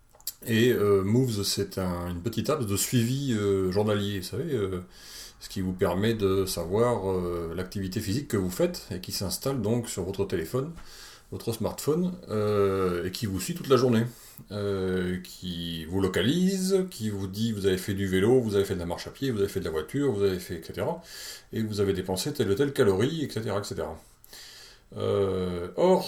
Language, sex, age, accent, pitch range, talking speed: French, male, 30-49, French, 95-125 Hz, 200 wpm